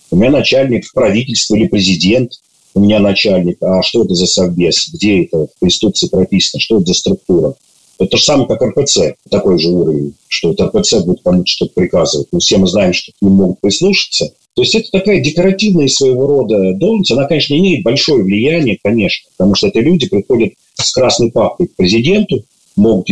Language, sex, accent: Russian, male, native